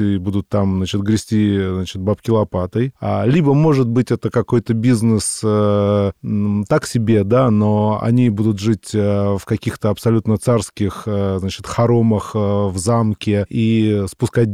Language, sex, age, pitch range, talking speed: Russian, male, 20-39, 100-120 Hz, 145 wpm